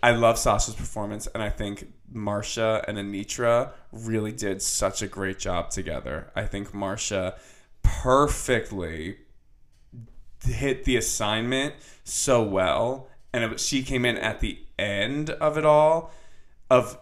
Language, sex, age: English, male, 20-39